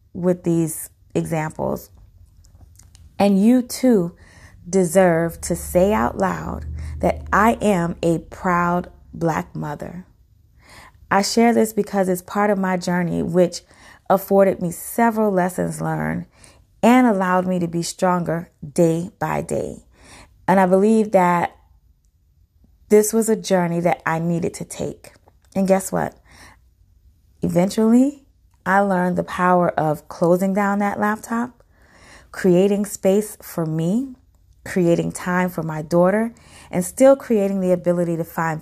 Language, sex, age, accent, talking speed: English, female, 20-39, American, 130 wpm